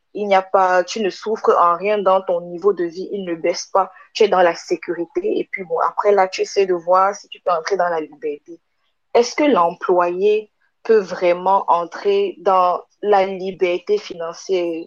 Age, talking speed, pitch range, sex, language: 20-39, 200 wpm, 180-230 Hz, female, English